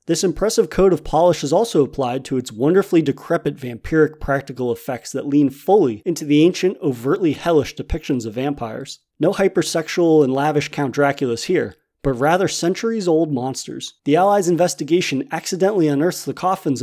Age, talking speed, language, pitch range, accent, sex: 30-49, 155 wpm, English, 130-165 Hz, American, male